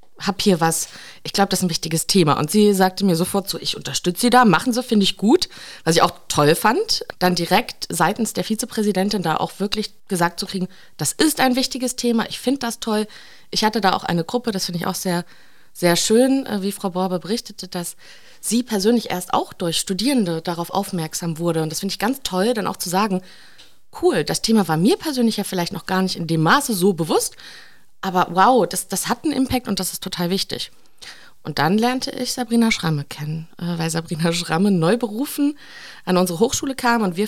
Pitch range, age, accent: 180-235 Hz, 30-49, German